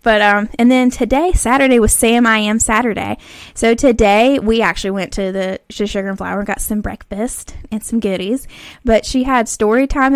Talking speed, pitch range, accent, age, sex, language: 195 wpm, 205-245 Hz, American, 10-29, female, English